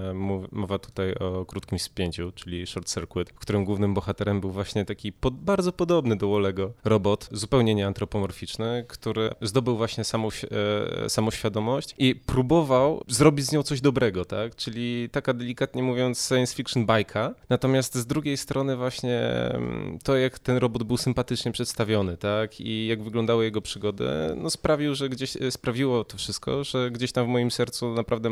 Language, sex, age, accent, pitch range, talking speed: Polish, male, 20-39, native, 105-130 Hz, 165 wpm